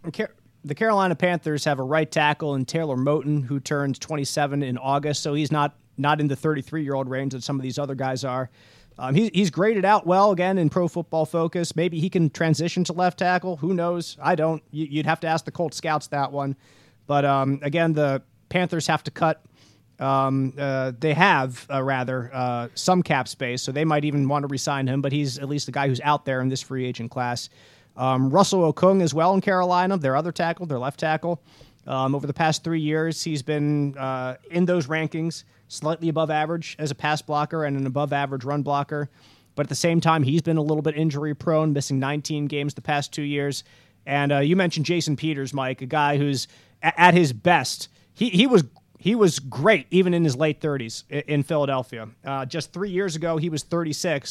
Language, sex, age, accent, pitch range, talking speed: English, male, 30-49, American, 135-165 Hz, 215 wpm